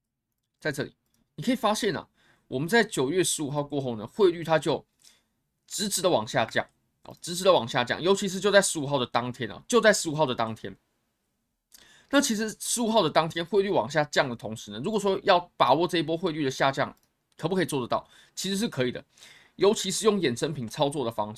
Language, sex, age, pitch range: Chinese, male, 20-39, 125-185 Hz